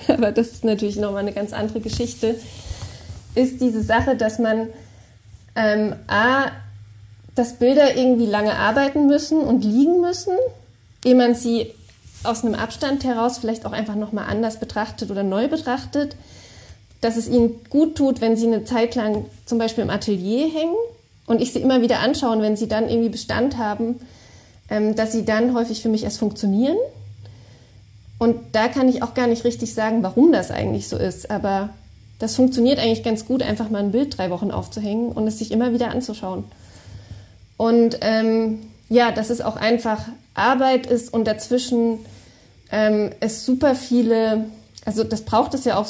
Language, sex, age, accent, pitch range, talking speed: German, female, 30-49, German, 205-240 Hz, 170 wpm